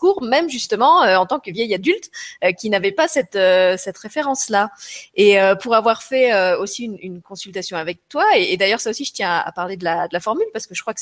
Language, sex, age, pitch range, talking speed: French, female, 30-49, 185-265 Hz, 270 wpm